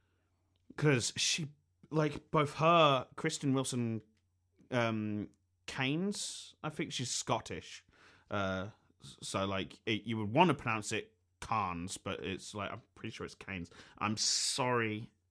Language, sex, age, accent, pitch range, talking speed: English, male, 30-49, British, 95-120 Hz, 135 wpm